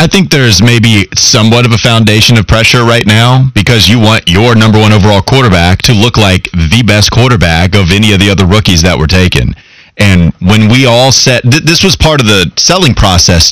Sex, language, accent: male, English, American